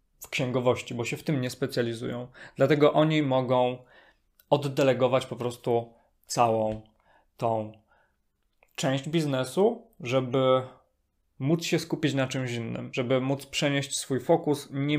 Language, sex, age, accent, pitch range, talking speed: Polish, male, 20-39, native, 130-155 Hz, 125 wpm